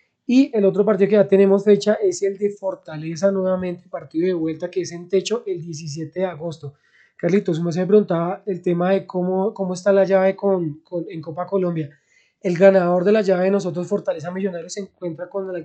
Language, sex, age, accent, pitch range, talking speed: Spanish, male, 20-39, Colombian, 170-200 Hz, 205 wpm